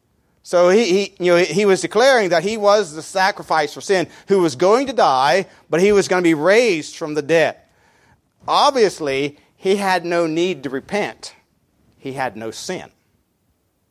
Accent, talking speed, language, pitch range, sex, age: American, 175 wpm, English, 130-175 Hz, male, 40-59